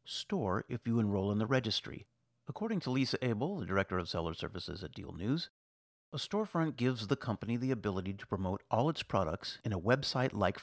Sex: male